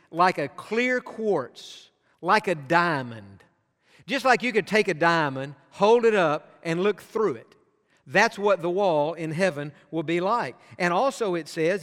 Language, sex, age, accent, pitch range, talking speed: English, male, 50-69, American, 160-210 Hz, 170 wpm